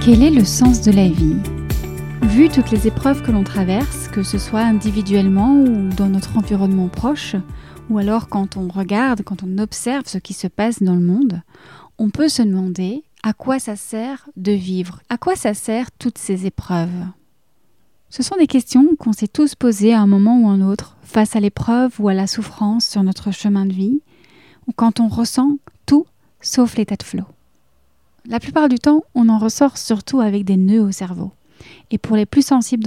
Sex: female